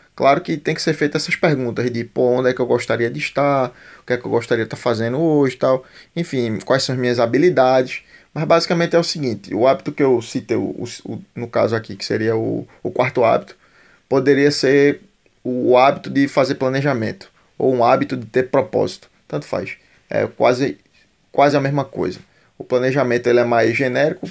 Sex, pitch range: male, 115-140 Hz